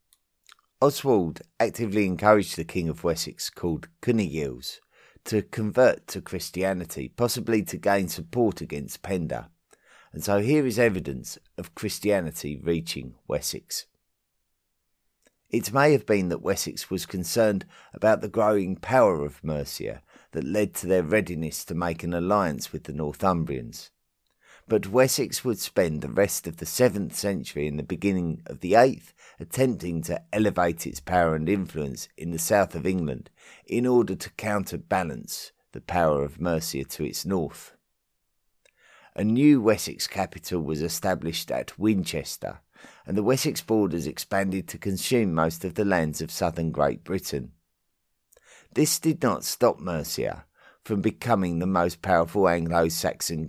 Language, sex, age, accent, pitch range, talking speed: English, male, 50-69, British, 80-105 Hz, 140 wpm